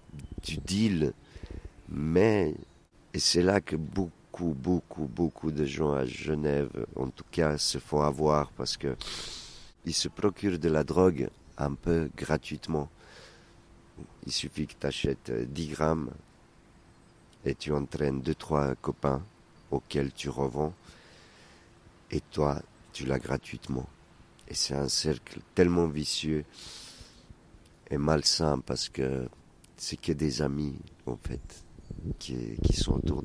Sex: male